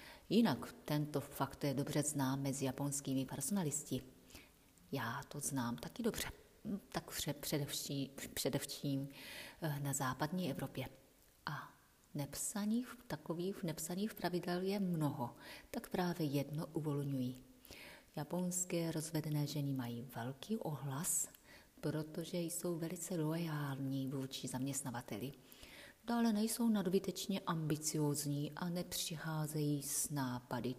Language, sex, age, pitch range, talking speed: Czech, female, 30-49, 140-175 Hz, 100 wpm